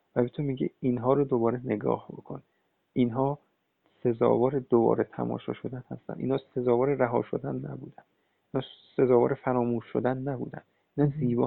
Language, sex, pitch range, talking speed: Persian, male, 120-135 Hz, 135 wpm